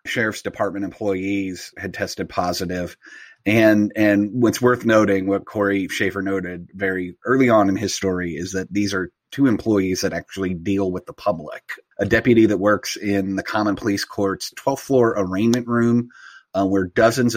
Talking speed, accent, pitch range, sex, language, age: 170 wpm, American, 95-105 Hz, male, English, 30-49